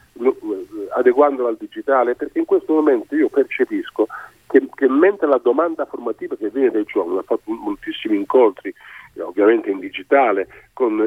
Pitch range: 320-395 Hz